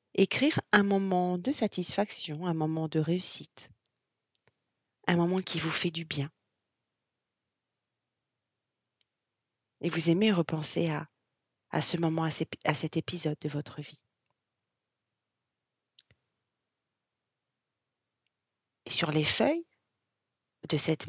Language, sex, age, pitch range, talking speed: French, female, 30-49, 140-180 Hz, 100 wpm